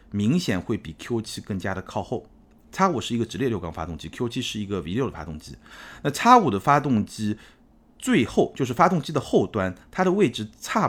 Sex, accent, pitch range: male, native, 95-135 Hz